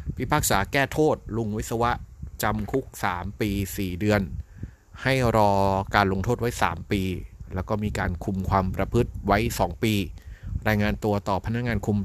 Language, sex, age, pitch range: Thai, male, 30-49, 95-110 Hz